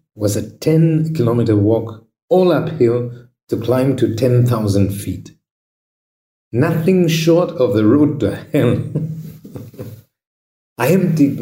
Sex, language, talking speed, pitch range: male, English, 110 wpm, 100-140 Hz